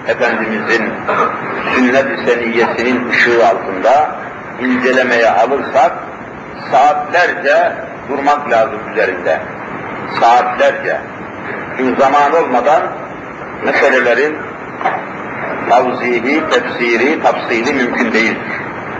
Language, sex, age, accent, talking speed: Turkish, male, 50-69, native, 65 wpm